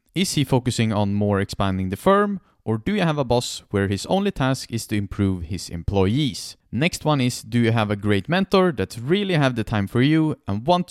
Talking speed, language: 225 wpm, English